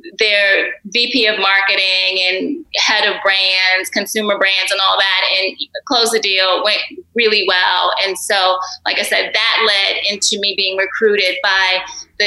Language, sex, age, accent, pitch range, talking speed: English, female, 20-39, American, 195-225 Hz, 160 wpm